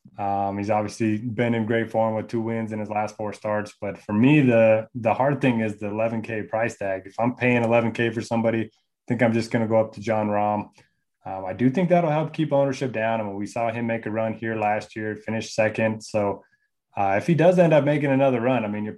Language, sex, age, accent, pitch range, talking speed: English, male, 20-39, American, 105-120 Hz, 255 wpm